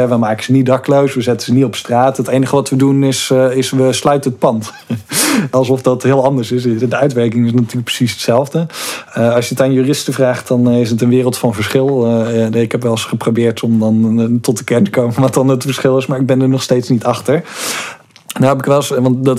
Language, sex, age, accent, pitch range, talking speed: Dutch, male, 50-69, Dutch, 115-135 Hz, 240 wpm